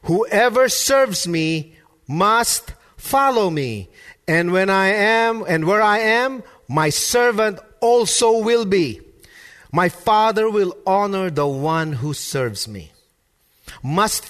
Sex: male